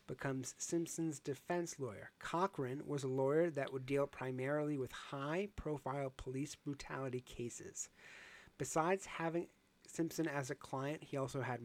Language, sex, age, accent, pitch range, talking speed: English, male, 30-49, American, 130-160 Hz, 135 wpm